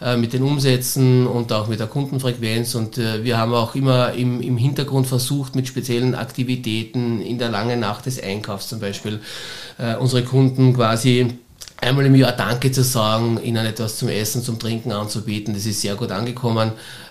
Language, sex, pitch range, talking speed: German, male, 105-125 Hz, 170 wpm